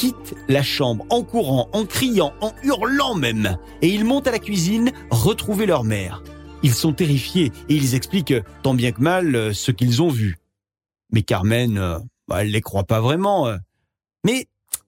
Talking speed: 170 wpm